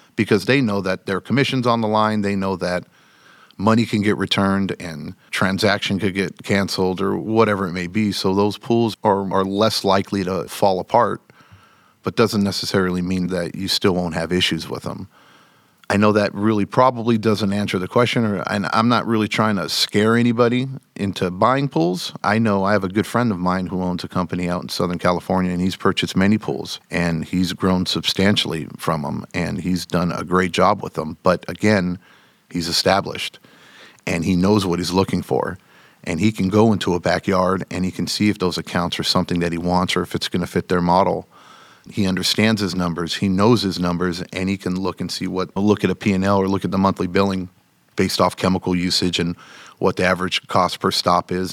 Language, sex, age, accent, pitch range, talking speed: English, male, 50-69, American, 90-105 Hz, 210 wpm